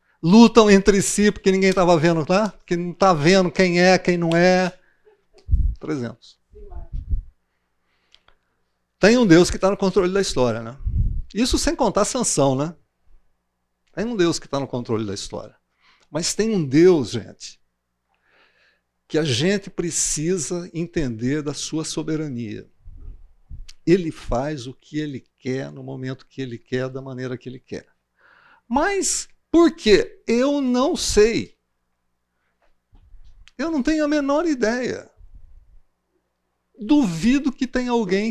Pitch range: 130-210 Hz